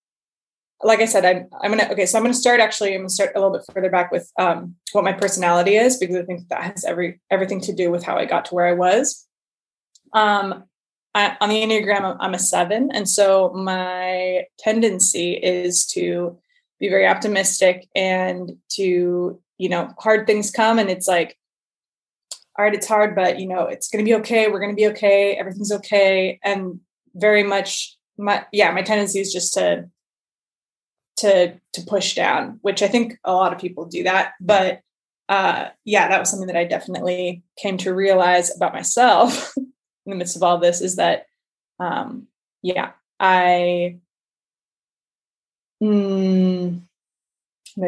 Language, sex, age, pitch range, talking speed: English, female, 20-39, 180-210 Hz, 180 wpm